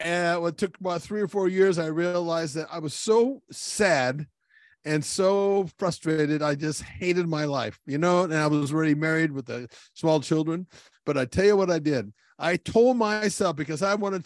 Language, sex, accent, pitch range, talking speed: English, male, American, 140-175 Hz, 200 wpm